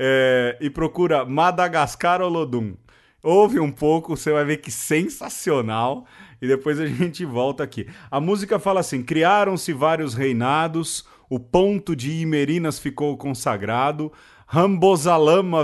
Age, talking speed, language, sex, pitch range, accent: 30-49, 125 wpm, Portuguese, male, 130-165 Hz, Brazilian